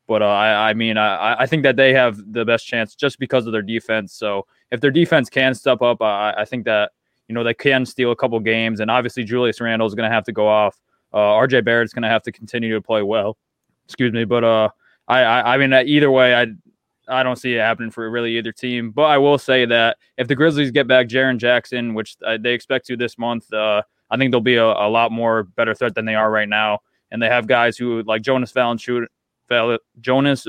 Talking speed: 245 wpm